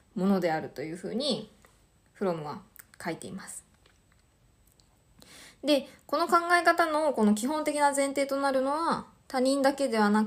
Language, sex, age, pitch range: Japanese, female, 20-39, 205-255 Hz